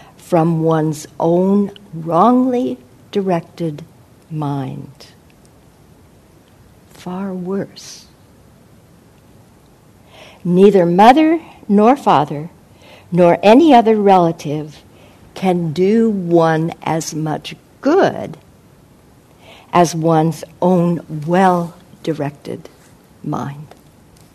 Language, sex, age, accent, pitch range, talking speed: English, female, 60-79, American, 155-190 Hz, 65 wpm